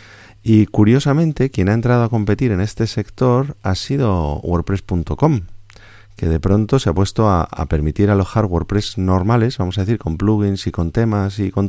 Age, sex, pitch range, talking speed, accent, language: 30-49, male, 90-110 Hz, 180 wpm, Spanish, Spanish